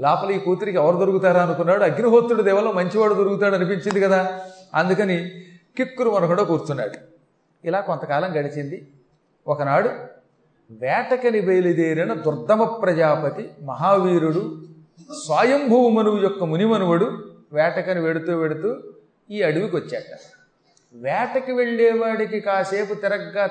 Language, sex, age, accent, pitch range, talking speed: Telugu, male, 40-59, native, 160-215 Hz, 95 wpm